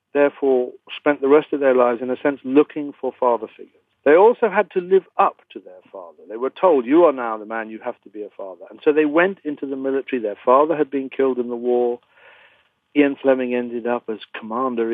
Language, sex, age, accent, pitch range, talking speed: English, male, 60-79, British, 125-190 Hz, 235 wpm